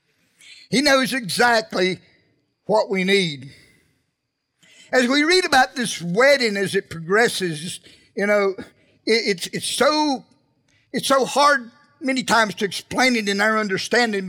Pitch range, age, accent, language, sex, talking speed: 170-225 Hz, 50-69, American, English, male, 135 wpm